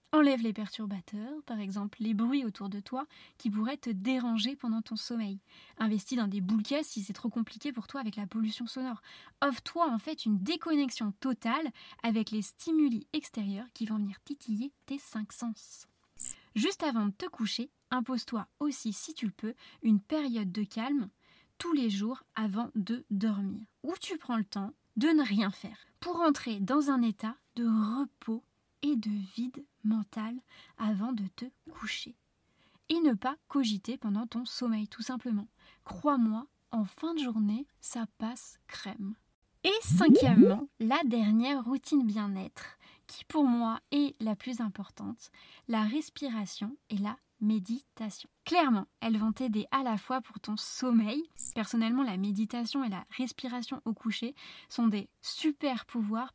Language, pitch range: French, 215-270 Hz